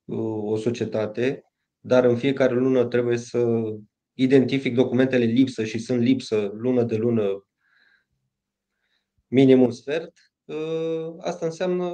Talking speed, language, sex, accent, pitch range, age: 105 wpm, Romanian, male, native, 120-150 Hz, 20-39